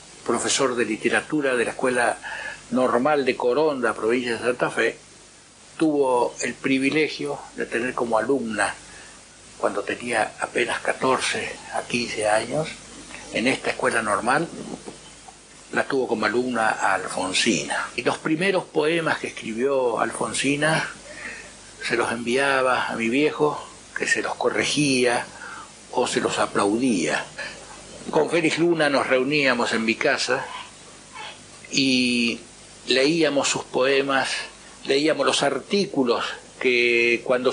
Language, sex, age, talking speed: Spanish, male, 60-79, 120 wpm